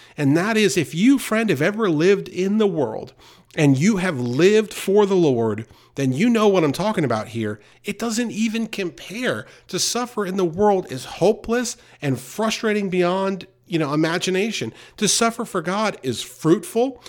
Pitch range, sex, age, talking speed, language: 125-180 Hz, male, 40-59, 175 wpm, English